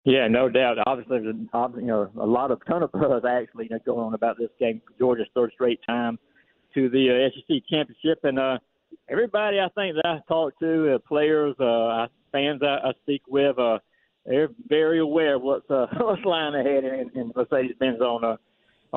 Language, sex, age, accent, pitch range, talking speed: English, male, 60-79, American, 125-155 Hz, 200 wpm